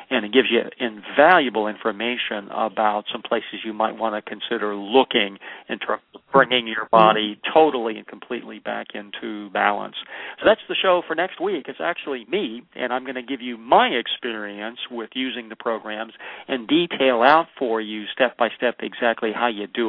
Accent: American